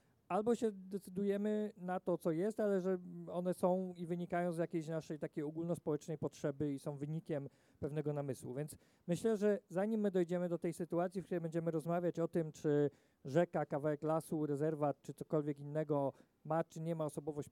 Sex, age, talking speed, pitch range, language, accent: male, 40-59, 180 wpm, 150-185 Hz, Polish, native